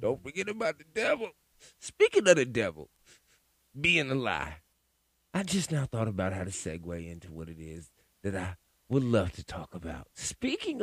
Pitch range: 95-160 Hz